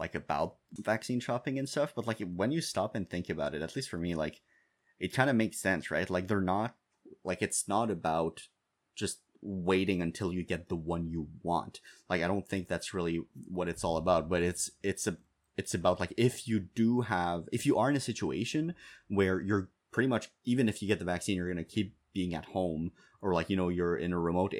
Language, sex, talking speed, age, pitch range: English, male, 230 wpm, 30-49, 85-100 Hz